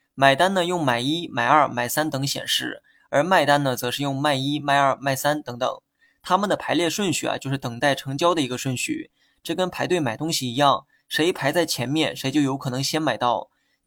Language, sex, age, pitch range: Chinese, male, 20-39, 135-165 Hz